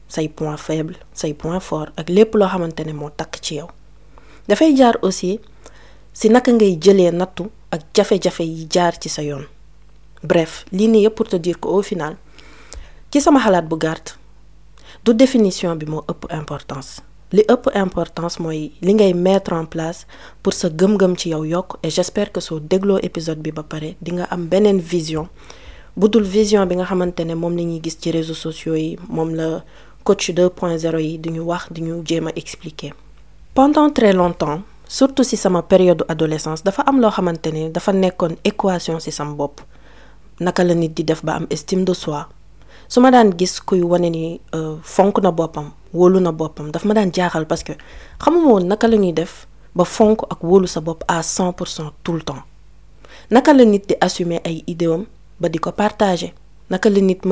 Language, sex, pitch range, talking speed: French, female, 160-195 Hz, 100 wpm